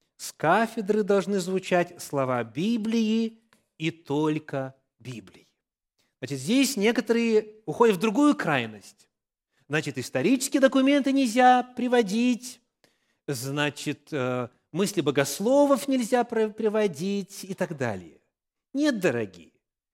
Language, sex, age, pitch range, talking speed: English, male, 30-49, 165-230 Hz, 95 wpm